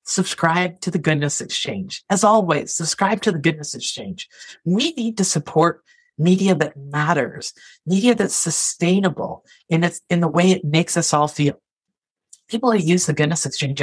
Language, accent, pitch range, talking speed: English, American, 145-185 Hz, 165 wpm